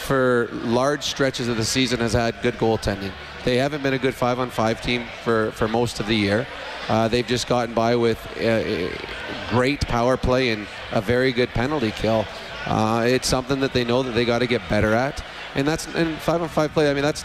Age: 30-49